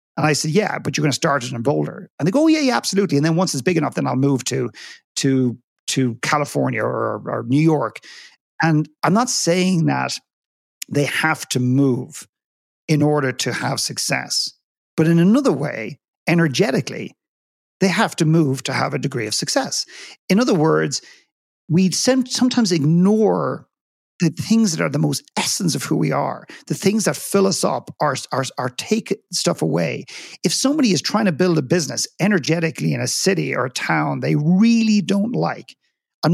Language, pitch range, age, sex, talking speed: English, 140-185 Hz, 50-69, male, 190 wpm